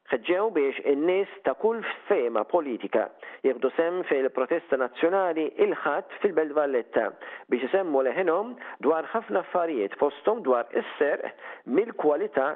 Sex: male